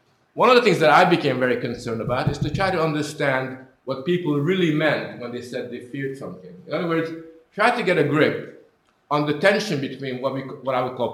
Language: English